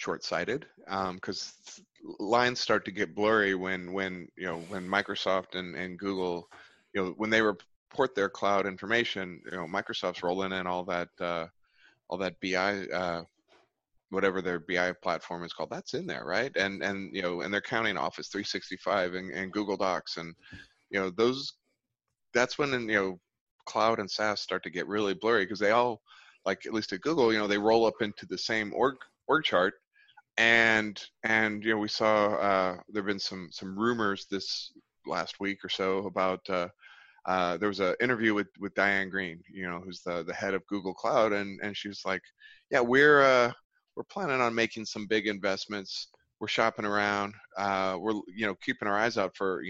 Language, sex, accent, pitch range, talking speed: English, male, American, 95-110 Hz, 195 wpm